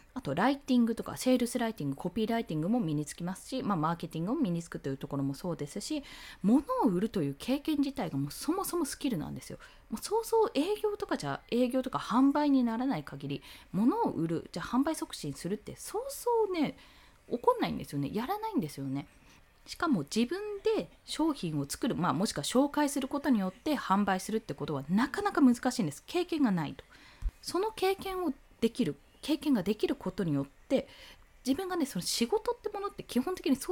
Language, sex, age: Japanese, female, 20-39